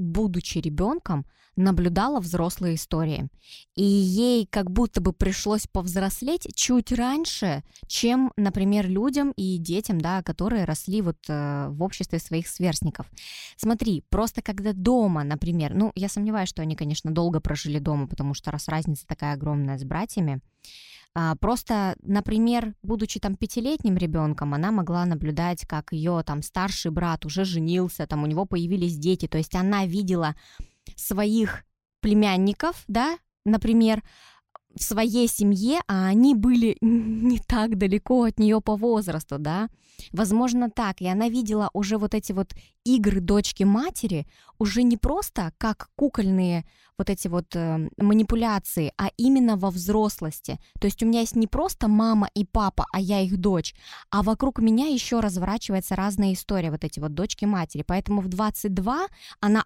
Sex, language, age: female, Russian, 20-39